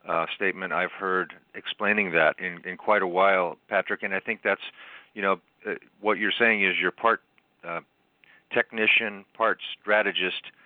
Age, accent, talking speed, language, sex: 40-59, American, 165 wpm, English, male